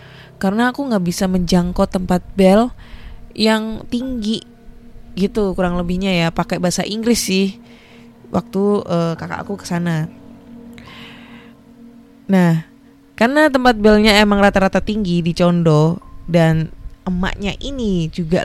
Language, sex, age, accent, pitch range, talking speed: Indonesian, female, 20-39, native, 165-210 Hz, 115 wpm